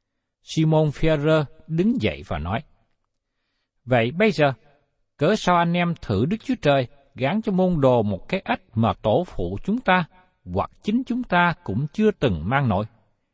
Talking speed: 170 wpm